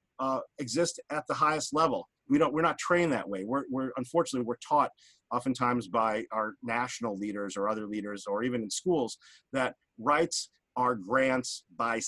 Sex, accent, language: male, American, English